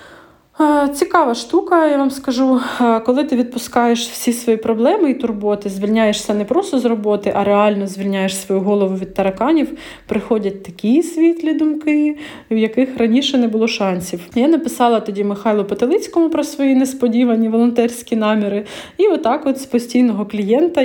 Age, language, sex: 20-39, Ukrainian, female